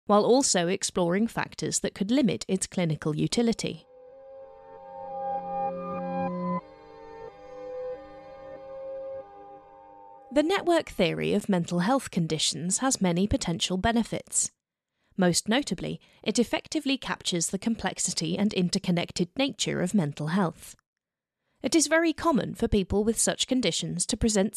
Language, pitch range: English, 175-245 Hz